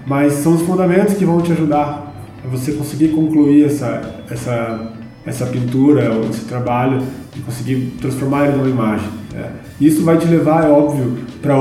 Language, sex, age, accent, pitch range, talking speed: Portuguese, male, 20-39, Brazilian, 120-155 Hz, 170 wpm